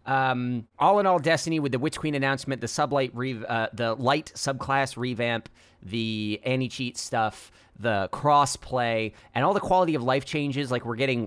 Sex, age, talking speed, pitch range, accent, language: male, 30-49, 175 wpm, 110-155 Hz, American, English